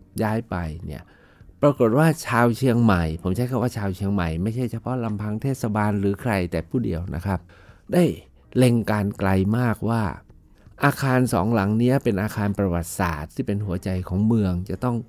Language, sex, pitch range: Thai, male, 95-120 Hz